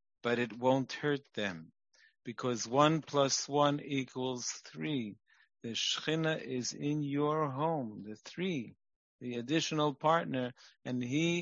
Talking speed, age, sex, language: 125 wpm, 50-69, male, English